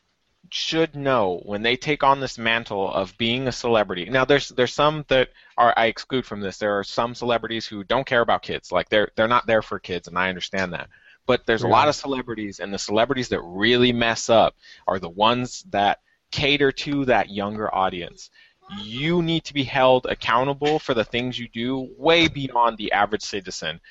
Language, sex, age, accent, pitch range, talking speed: English, male, 20-39, American, 110-150 Hz, 200 wpm